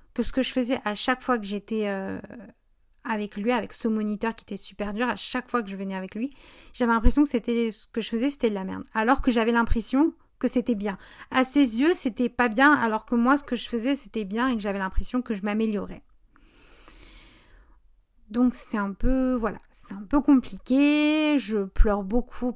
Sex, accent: female, French